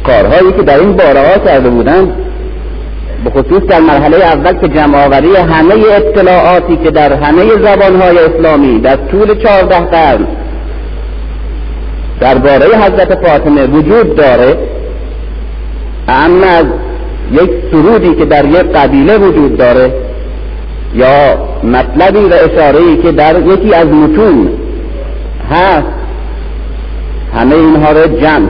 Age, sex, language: 50-69, male, Persian